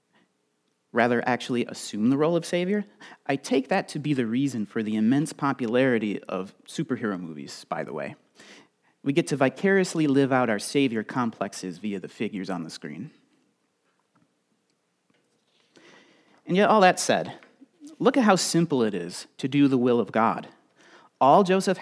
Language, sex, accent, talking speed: English, male, American, 160 wpm